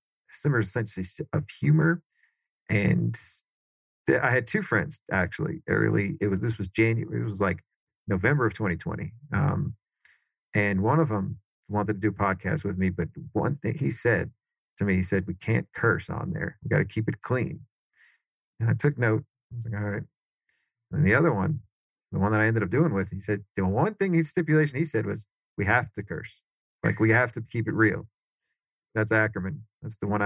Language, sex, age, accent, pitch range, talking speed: English, male, 40-59, American, 95-110 Hz, 200 wpm